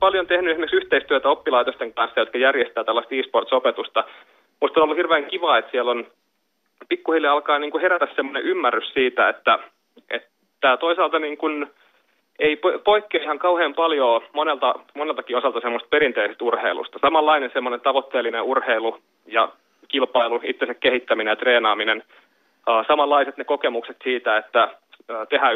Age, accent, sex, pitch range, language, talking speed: 30-49, native, male, 135-175 Hz, Finnish, 135 wpm